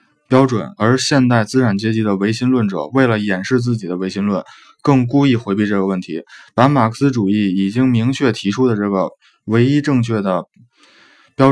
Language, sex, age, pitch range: Chinese, male, 20-39, 105-135 Hz